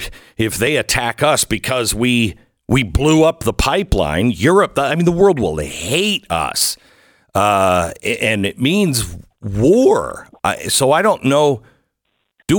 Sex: male